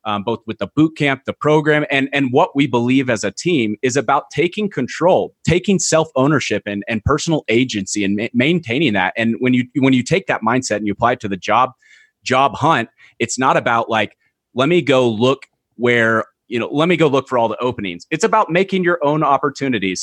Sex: male